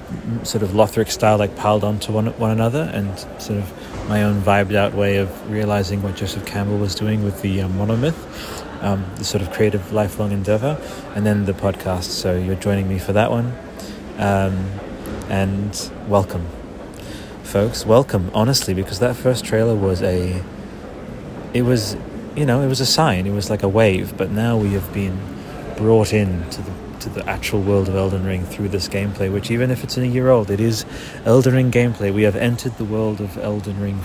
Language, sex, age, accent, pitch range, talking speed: English, male, 30-49, British, 100-115 Hz, 195 wpm